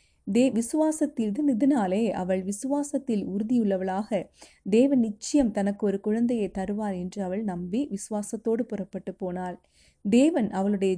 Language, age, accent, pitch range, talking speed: Tamil, 30-49, native, 190-235 Hz, 105 wpm